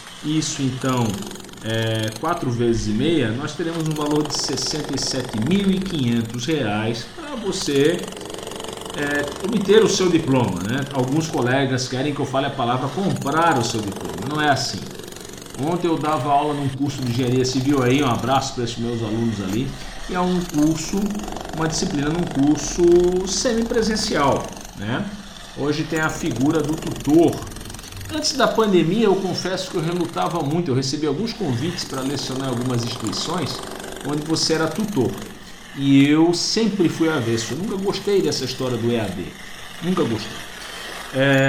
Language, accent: Portuguese, Brazilian